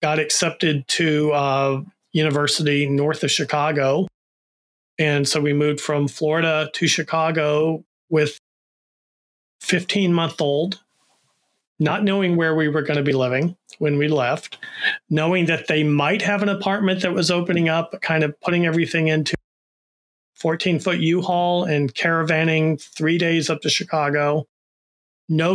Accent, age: American, 40-59